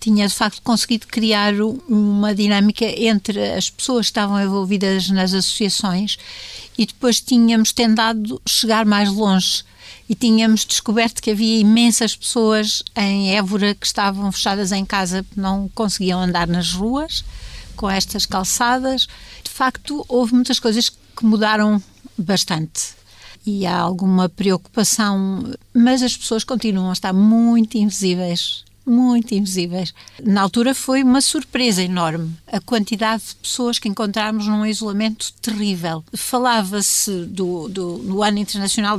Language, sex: Portuguese, female